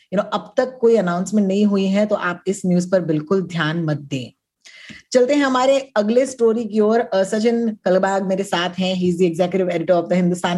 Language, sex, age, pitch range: Hindi, female, 20-39, 180-240 Hz